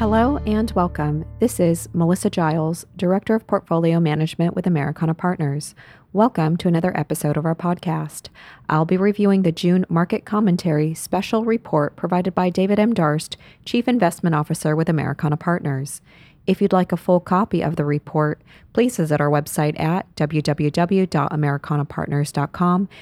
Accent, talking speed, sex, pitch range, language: American, 145 wpm, female, 150-190 Hz, English